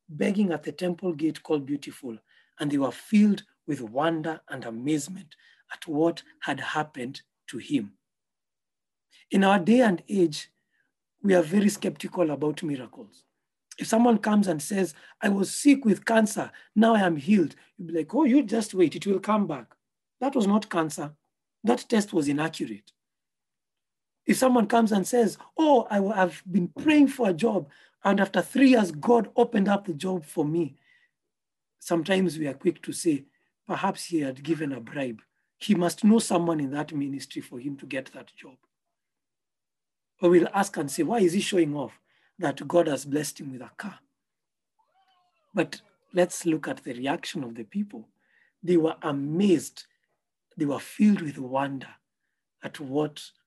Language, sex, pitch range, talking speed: English, male, 155-215 Hz, 170 wpm